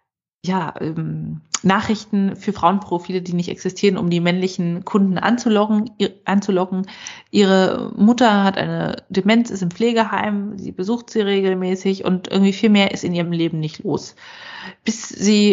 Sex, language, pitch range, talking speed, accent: female, German, 185-215 Hz, 150 wpm, German